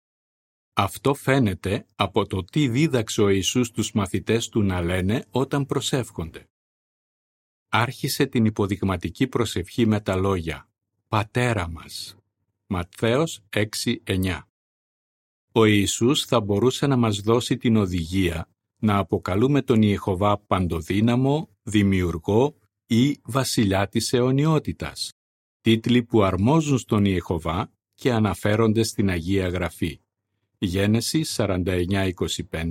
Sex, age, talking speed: male, 50-69, 105 wpm